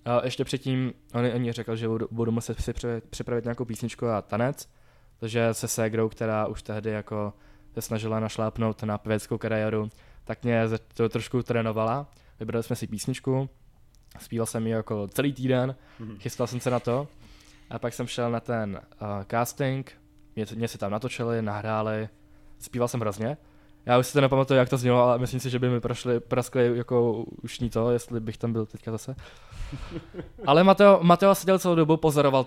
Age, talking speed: 20-39, 170 wpm